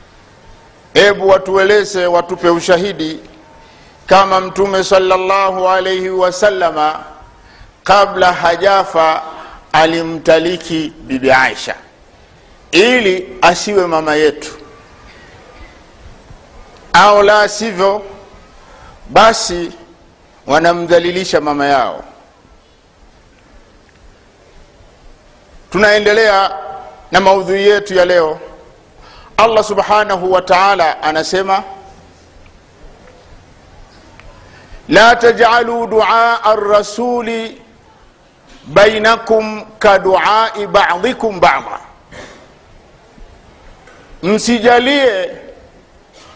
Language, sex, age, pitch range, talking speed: Swahili, male, 50-69, 170-215 Hz, 60 wpm